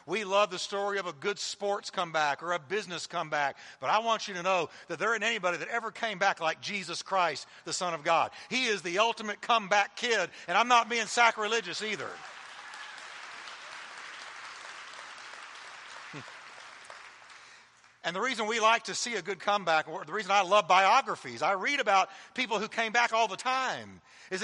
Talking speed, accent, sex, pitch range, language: 180 wpm, American, male, 190-240 Hz, English